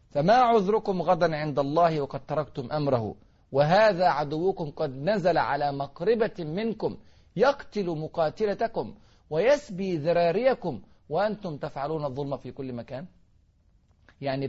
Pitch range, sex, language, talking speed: 135-195 Hz, male, Arabic, 110 wpm